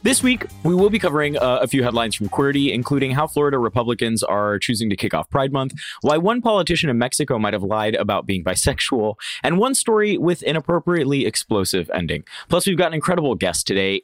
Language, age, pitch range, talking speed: English, 20-39, 105-155 Hz, 210 wpm